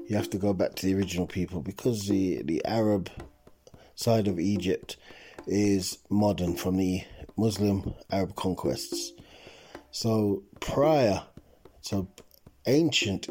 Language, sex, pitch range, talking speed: English, male, 95-115 Hz, 120 wpm